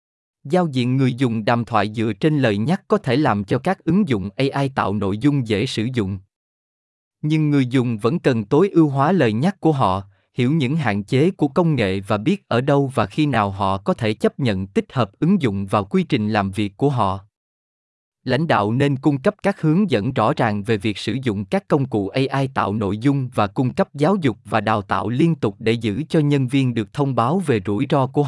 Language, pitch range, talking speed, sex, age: Vietnamese, 105-155 Hz, 230 wpm, male, 20-39